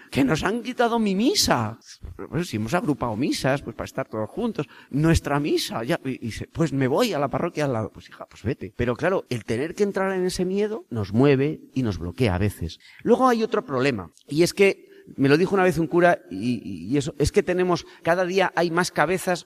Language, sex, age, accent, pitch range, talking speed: Spanish, male, 40-59, Spanish, 125-175 Hz, 215 wpm